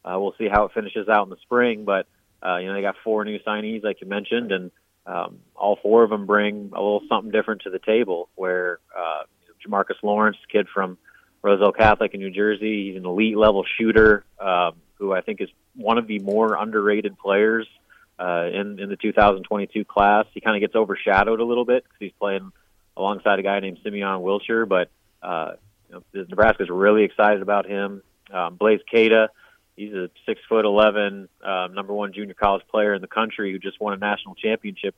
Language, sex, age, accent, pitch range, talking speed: English, male, 30-49, American, 100-110 Hz, 205 wpm